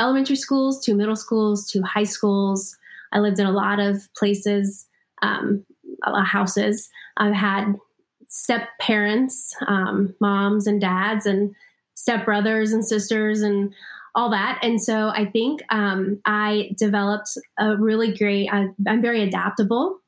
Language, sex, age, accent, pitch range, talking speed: English, female, 20-39, American, 200-235 Hz, 150 wpm